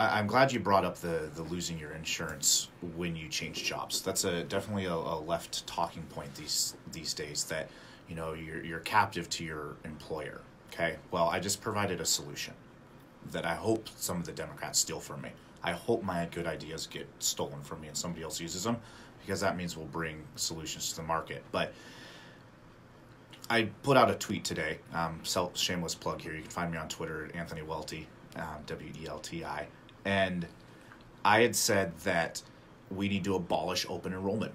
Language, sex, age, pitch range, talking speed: English, male, 30-49, 80-95 Hz, 195 wpm